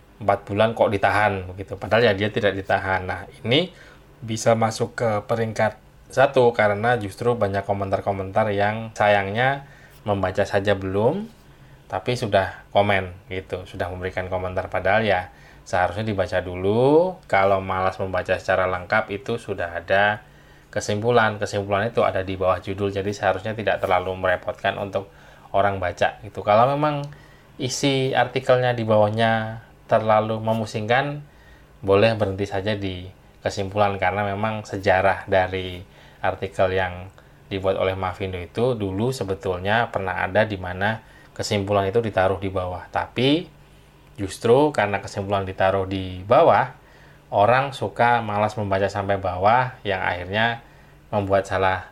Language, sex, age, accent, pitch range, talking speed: Indonesian, male, 20-39, native, 95-115 Hz, 130 wpm